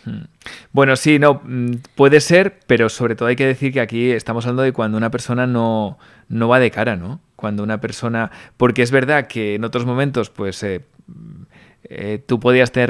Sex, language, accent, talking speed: male, Spanish, Spanish, 190 wpm